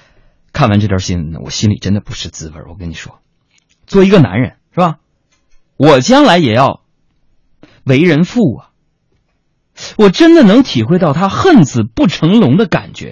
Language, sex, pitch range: Chinese, male, 105-150 Hz